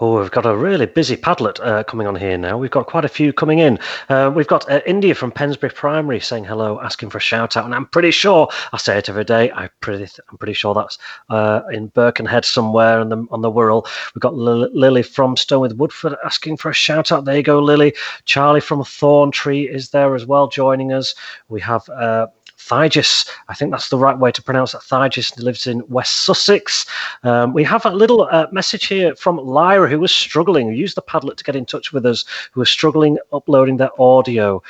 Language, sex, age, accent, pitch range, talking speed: English, male, 30-49, British, 115-150 Hz, 225 wpm